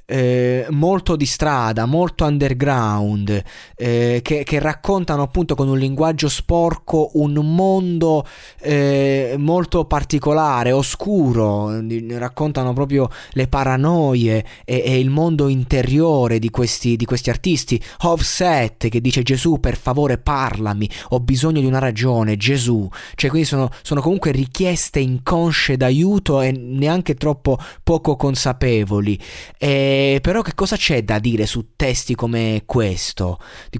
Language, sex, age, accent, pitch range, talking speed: Italian, male, 20-39, native, 115-150 Hz, 135 wpm